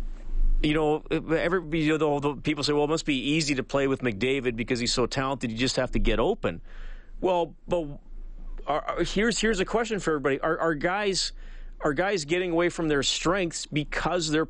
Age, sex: 40-59, male